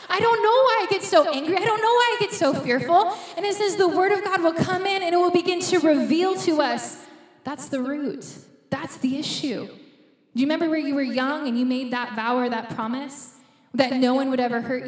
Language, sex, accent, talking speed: English, female, American, 245 wpm